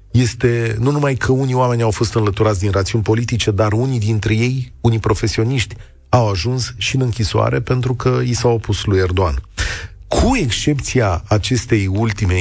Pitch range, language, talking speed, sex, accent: 100-140 Hz, Romanian, 165 wpm, male, native